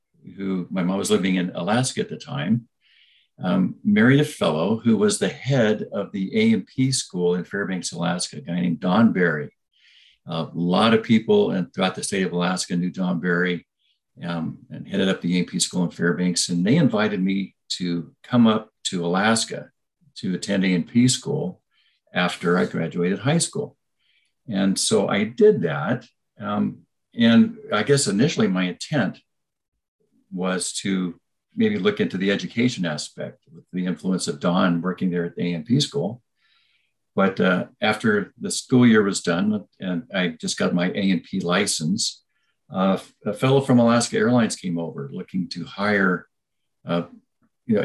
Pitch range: 90-140 Hz